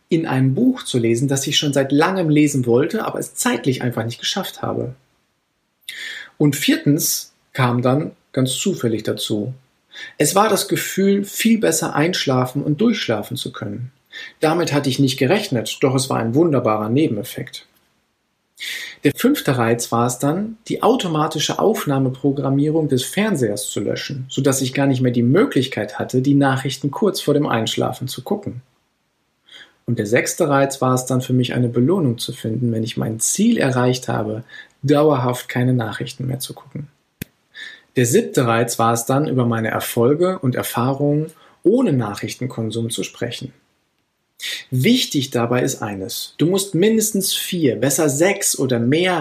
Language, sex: German, male